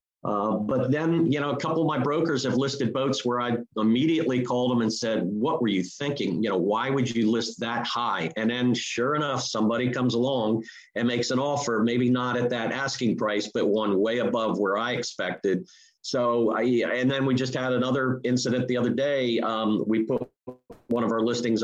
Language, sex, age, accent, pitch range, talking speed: English, male, 50-69, American, 110-125 Hz, 210 wpm